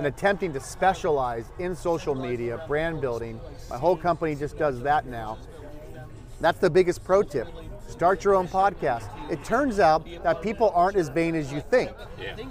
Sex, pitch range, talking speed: male, 150-195 Hz, 175 wpm